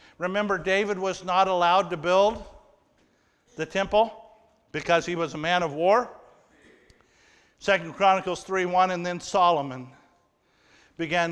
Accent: American